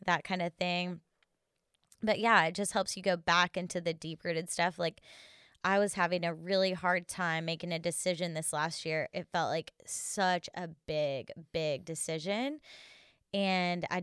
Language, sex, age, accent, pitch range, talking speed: English, female, 10-29, American, 165-190 Hz, 175 wpm